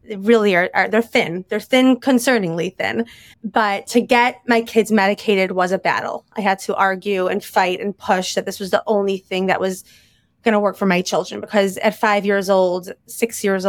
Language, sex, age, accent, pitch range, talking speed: English, female, 20-39, American, 190-225 Hz, 205 wpm